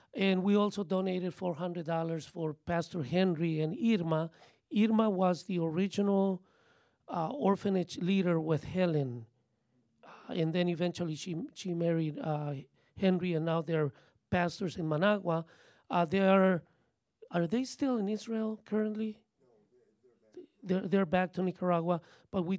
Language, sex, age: English, male, 40-59